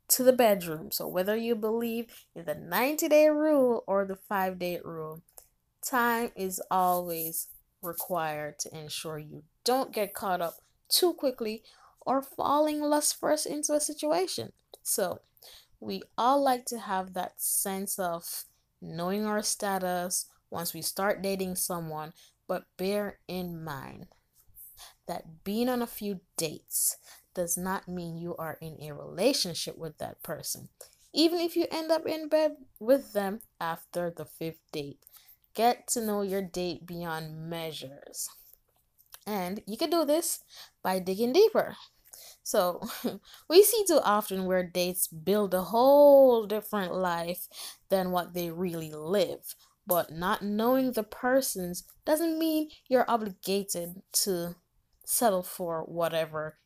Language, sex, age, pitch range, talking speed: English, female, 10-29, 170-245 Hz, 140 wpm